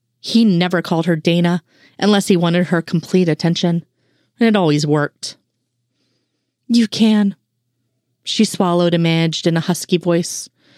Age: 30-49